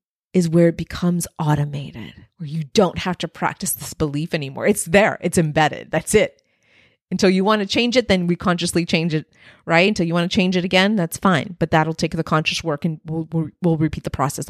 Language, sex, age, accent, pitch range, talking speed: English, female, 30-49, American, 155-185 Hz, 220 wpm